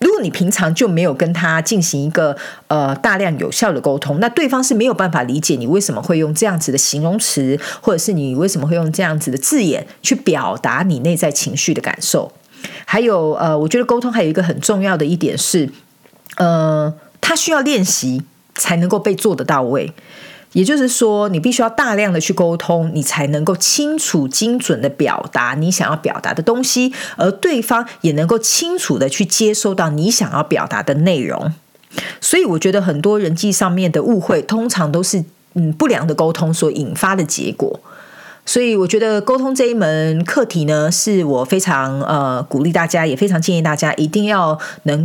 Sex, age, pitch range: female, 40-59, 155-215 Hz